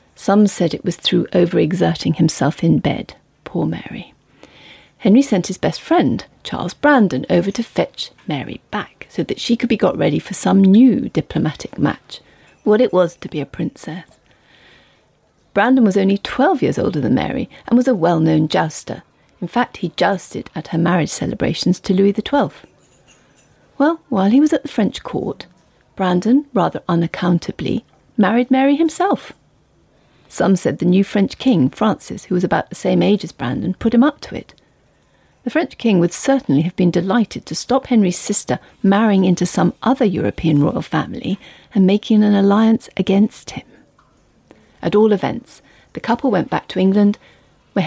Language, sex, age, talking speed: English, female, 40-59, 170 wpm